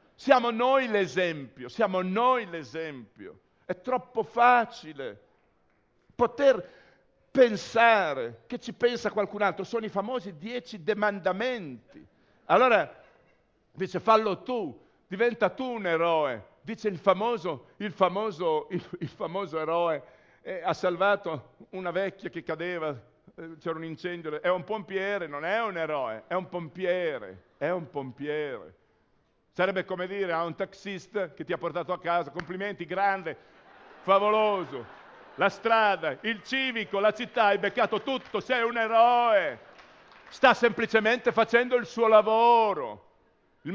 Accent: native